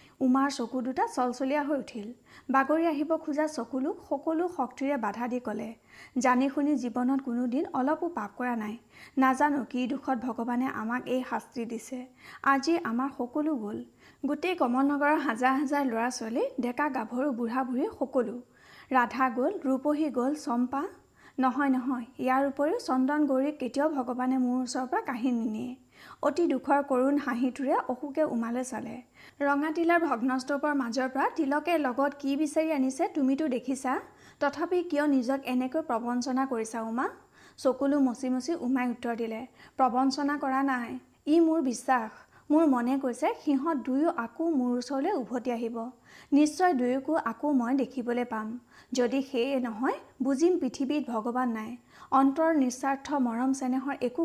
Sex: female